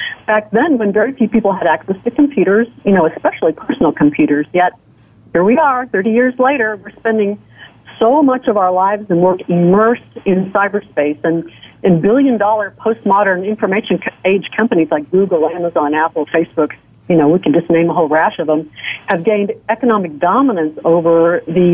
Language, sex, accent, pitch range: English, female, American, 170-220 Hz